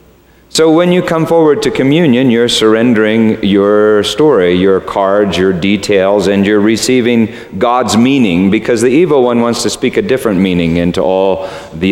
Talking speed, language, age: 165 wpm, English, 40-59